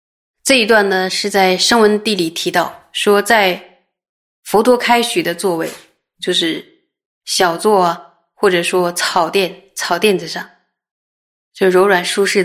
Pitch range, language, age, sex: 175-210 Hz, Chinese, 20-39, female